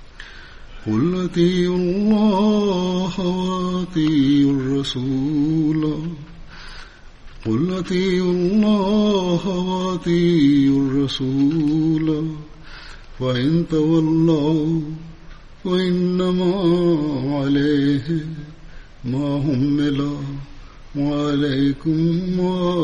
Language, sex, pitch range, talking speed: Swahili, male, 140-180 Hz, 35 wpm